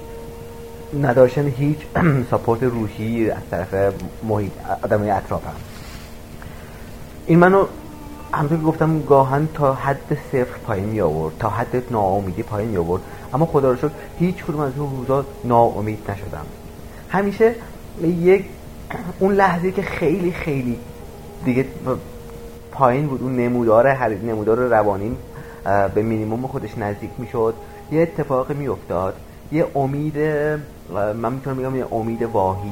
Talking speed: 130 wpm